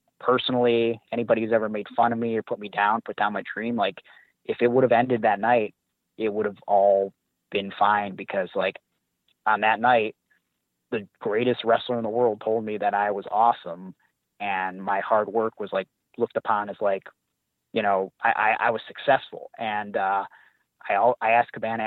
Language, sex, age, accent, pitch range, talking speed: English, male, 30-49, American, 100-120 Hz, 190 wpm